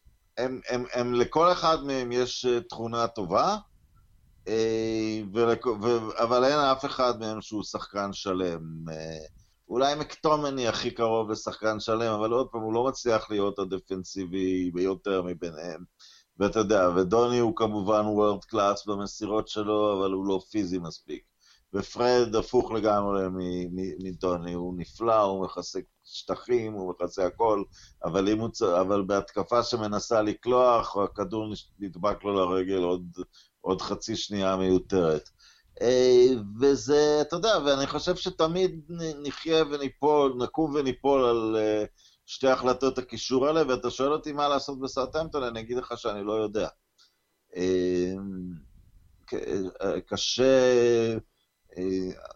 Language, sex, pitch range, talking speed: Hebrew, male, 95-125 Hz, 115 wpm